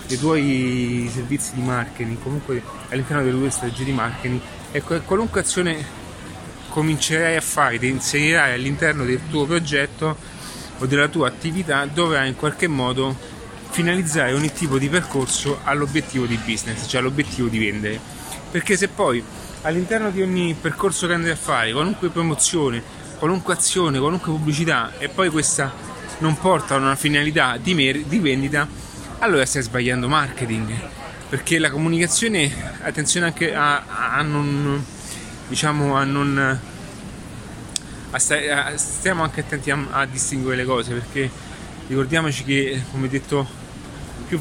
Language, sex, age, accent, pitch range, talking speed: Italian, male, 30-49, native, 130-155 Hz, 140 wpm